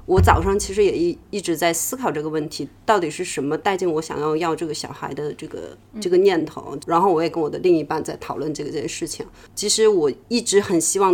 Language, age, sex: Chinese, 30-49, female